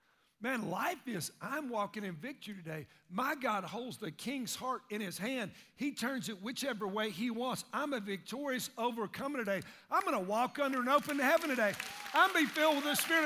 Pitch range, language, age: 205-270 Hz, English, 50-69